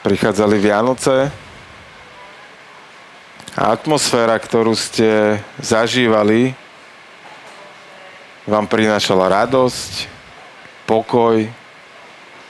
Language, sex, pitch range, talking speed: Slovak, male, 105-120 Hz, 55 wpm